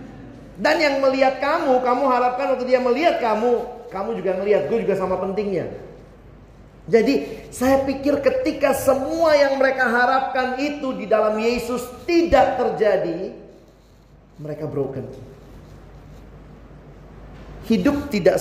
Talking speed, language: 115 wpm, Indonesian